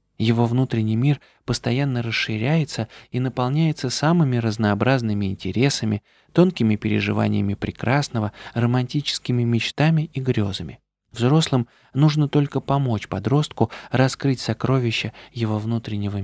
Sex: male